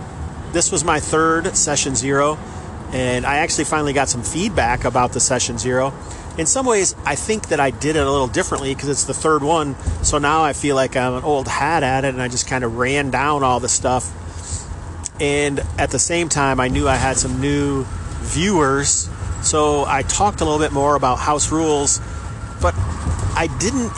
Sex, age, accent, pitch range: male, 40-59, American, 110-145 Hz